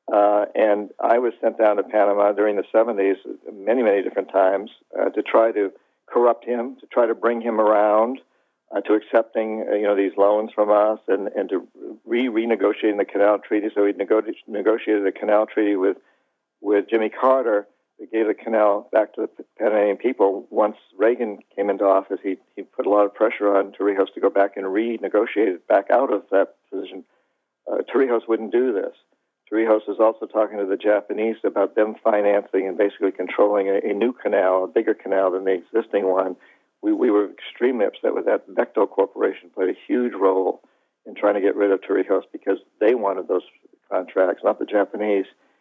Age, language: 60-79, English